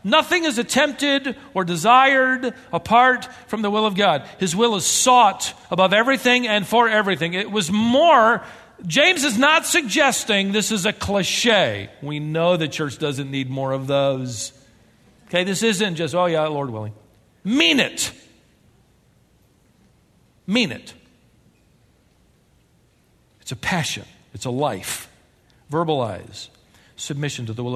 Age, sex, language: 50-69, male, English